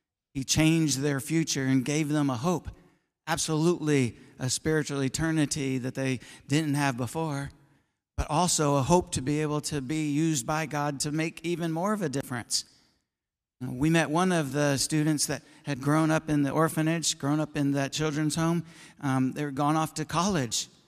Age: 50-69